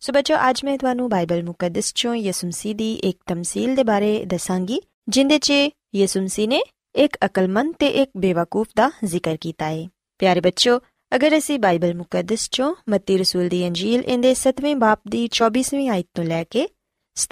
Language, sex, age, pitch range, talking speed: Punjabi, female, 20-39, 185-270 Hz, 130 wpm